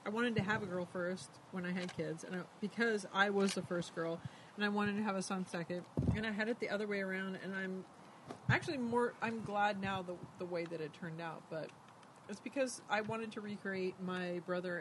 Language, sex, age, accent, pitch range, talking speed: English, female, 30-49, American, 180-260 Hz, 230 wpm